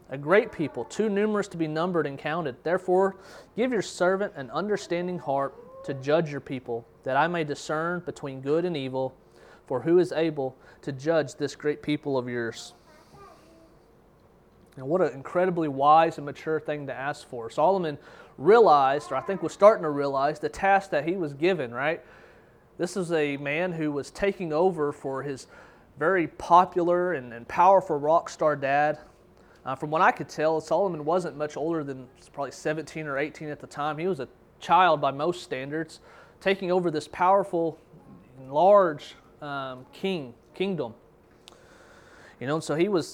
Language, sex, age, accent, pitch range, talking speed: English, male, 30-49, American, 140-180 Hz, 170 wpm